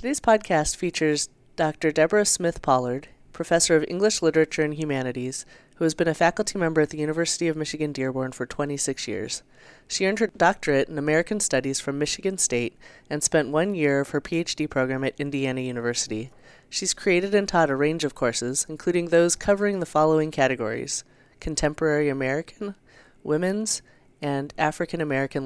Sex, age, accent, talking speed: female, 30-49, American, 160 wpm